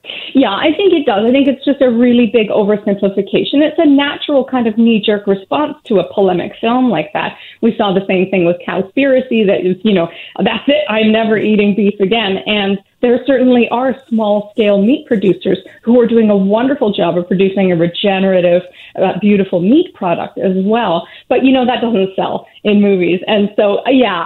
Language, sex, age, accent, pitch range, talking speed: English, female, 30-49, American, 195-250 Hz, 195 wpm